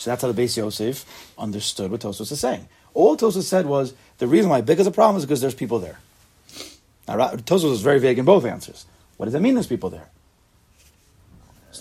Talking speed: 220 wpm